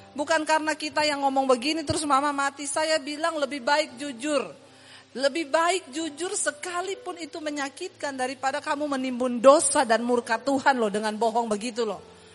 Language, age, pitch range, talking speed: English, 40-59, 240-335 Hz, 155 wpm